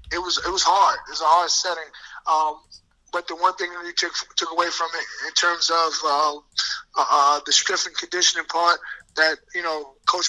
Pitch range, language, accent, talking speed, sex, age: 160-185 Hz, English, American, 215 wpm, male, 20-39